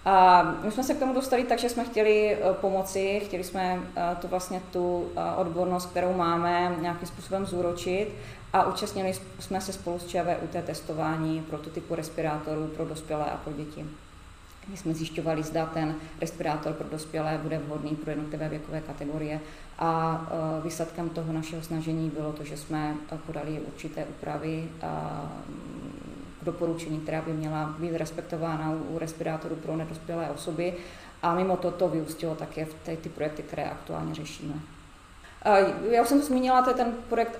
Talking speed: 150 wpm